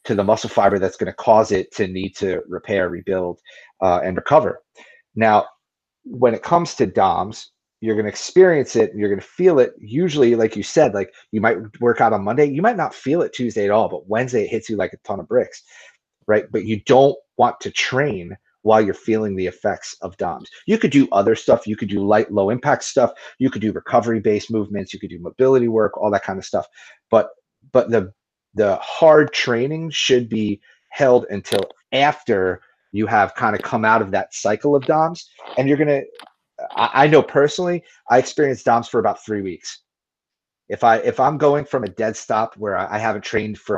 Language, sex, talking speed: English, male, 215 wpm